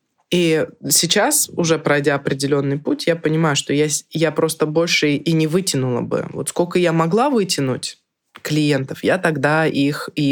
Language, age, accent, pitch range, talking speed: Russian, 20-39, native, 145-180 Hz, 155 wpm